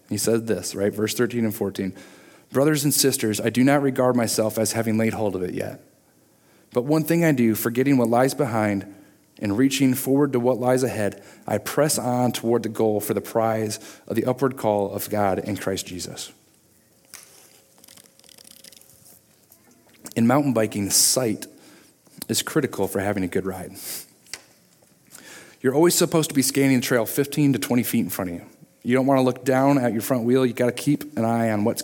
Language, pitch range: English, 110-135 Hz